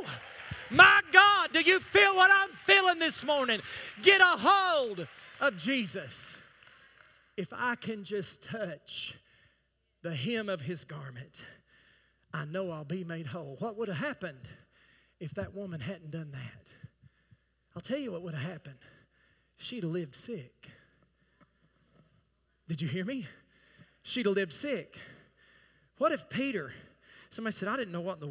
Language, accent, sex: English, American, male